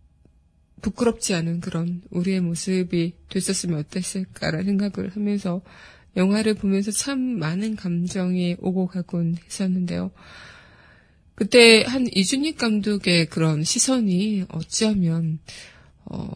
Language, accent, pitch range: Korean, native, 165-200 Hz